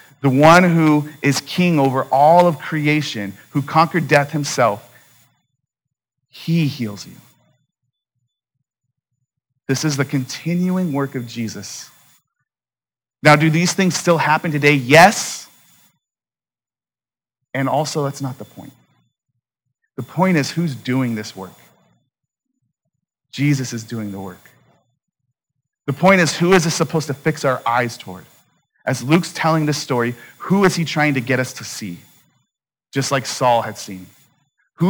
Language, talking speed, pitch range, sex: English, 140 wpm, 125-160 Hz, male